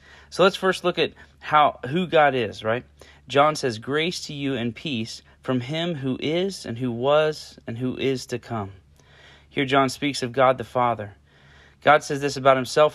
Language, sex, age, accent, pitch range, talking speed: English, male, 30-49, American, 120-145 Hz, 190 wpm